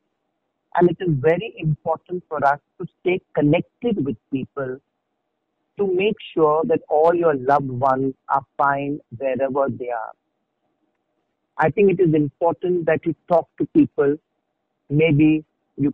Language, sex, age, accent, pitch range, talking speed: English, male, 50-69, Indian, 140-165 Hz, 140 wpm